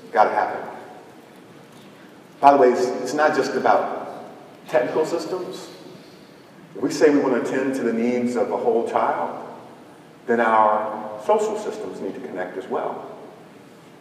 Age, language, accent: 40-59, English, American